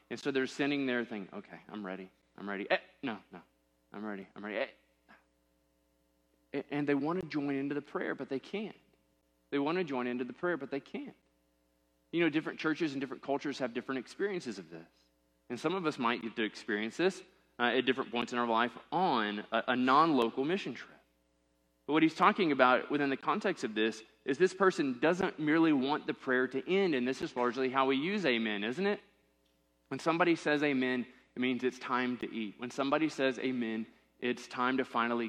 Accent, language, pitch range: American, English, 110-145 Hz